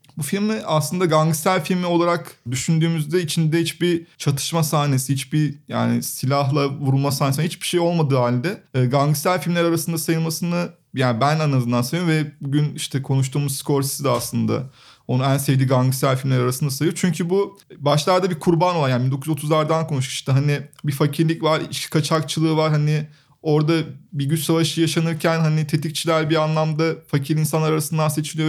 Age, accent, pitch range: 30-49, native, 145-170 Hz